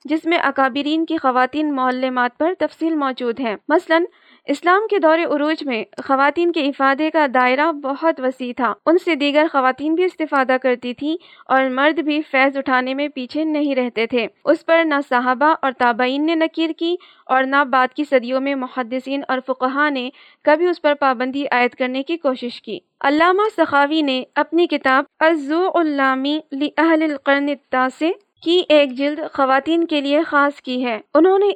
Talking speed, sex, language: 175 wpm, female, Urdu